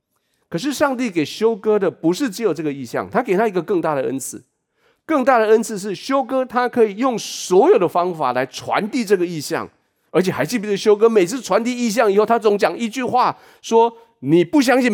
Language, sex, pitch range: Chinese, male, 150-235 Hz